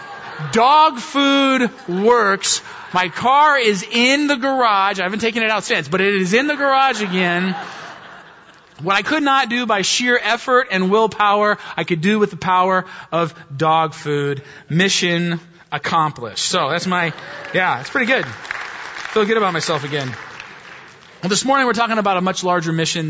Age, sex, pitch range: 30-49, male, 150-205 Hz